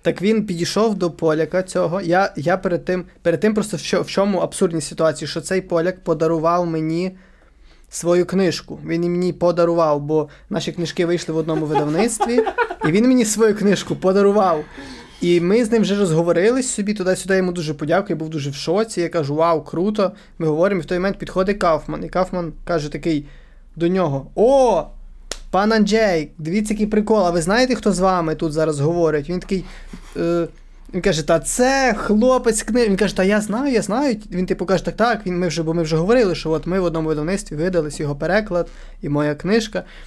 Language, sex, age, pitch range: Ukrainian, male, 20-39, 165-200 Hz